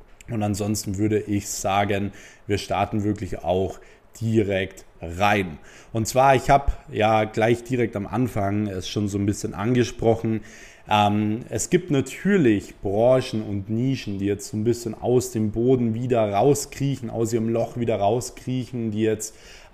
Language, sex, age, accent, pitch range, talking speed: German, male, 20-39, German, 105-125 Hz, 150 wpm